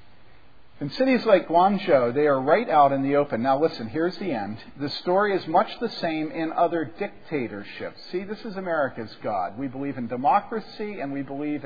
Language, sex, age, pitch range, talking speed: English, male, 50-69, 135-200 Hz, 190 wpm